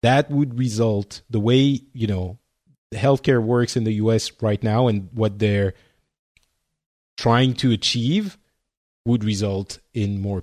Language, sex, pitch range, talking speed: English, male, 110-140 Hz, 140 wpm